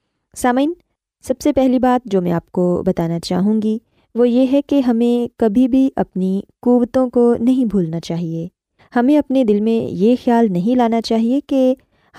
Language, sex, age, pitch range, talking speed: Urdu, female, 20-39, 195-260 Hz, 170 wpm